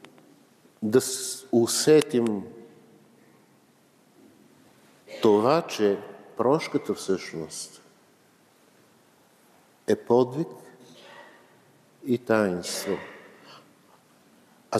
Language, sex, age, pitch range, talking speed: Bulgarian, male, 50-69, 115-150 Hz, 45 wpm